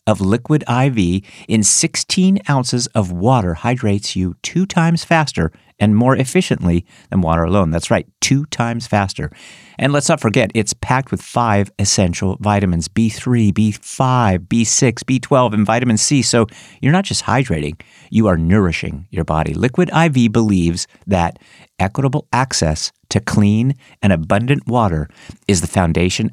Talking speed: 150 wpm